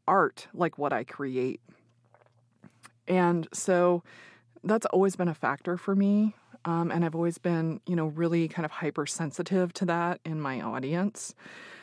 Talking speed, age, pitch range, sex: 150 wpm, 30-49, 130-170 Hz, female